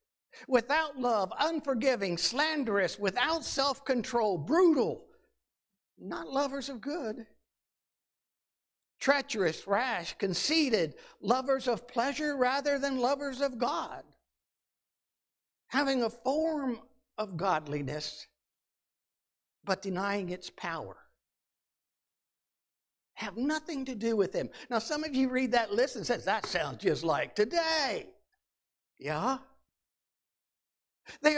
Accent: American